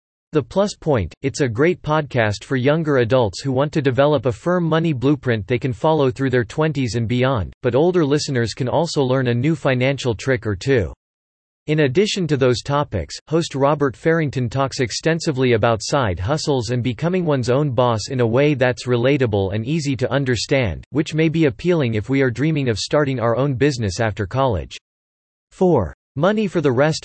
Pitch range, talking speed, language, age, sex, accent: 115-150 Hz, 190 wpm, English, 40-59, male, American